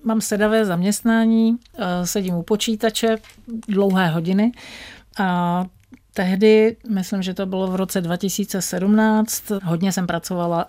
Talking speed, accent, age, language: 110 wpm, native, 50-69, Czech